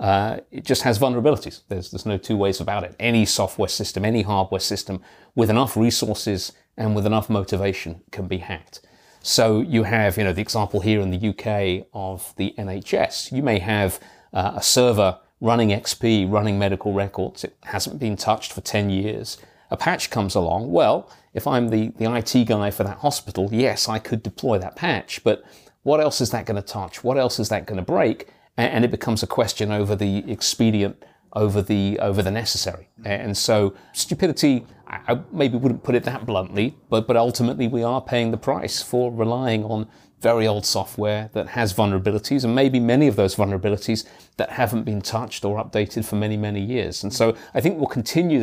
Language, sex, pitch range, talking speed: English, male, 100-120 Hz, 195 wpm